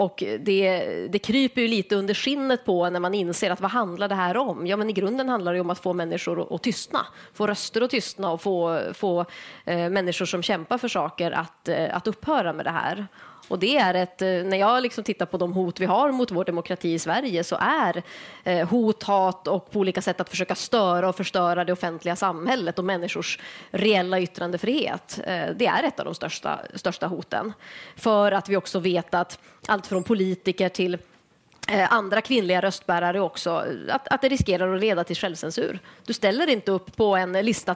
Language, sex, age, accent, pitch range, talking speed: Swedish, female, 30-49, native, 180-215 Hz, 200 wpm